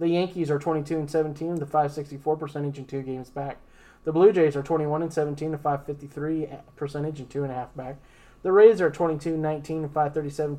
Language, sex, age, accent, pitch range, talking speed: English, male, 20-39, American, 140-160 Hz, 210 wpm